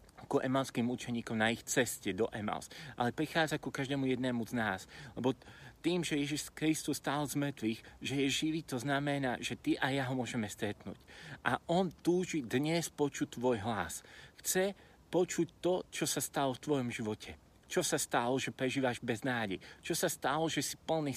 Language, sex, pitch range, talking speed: Slovak, male, 120-150 Hz, 180 wpm